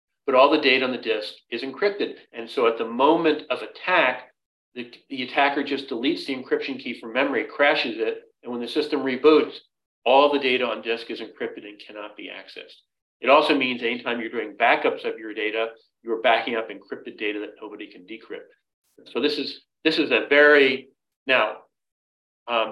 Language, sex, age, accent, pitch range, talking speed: English, male, 40-59, American, 115-155 Hz, 190 wpm